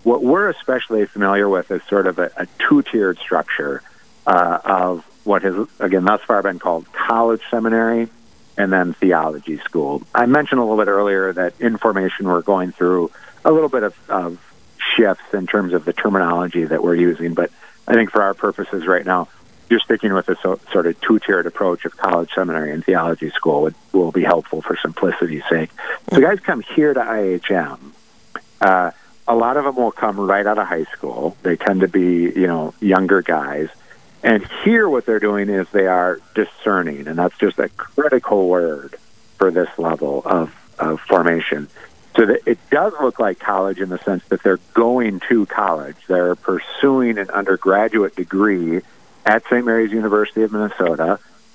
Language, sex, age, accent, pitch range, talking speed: English, male, 50-69, American, 90-105 Hz, 180 wpm